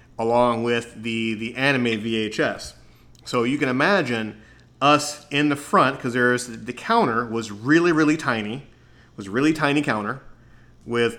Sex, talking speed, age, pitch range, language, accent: male, 145 wpm, 30-49, 110-125 Hz, English, American